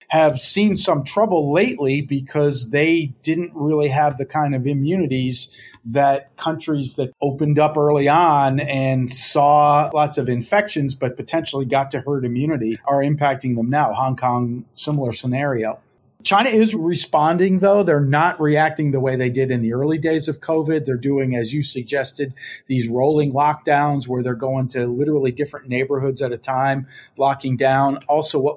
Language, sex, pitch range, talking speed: English, male, 130-150 Hz, 165 wpm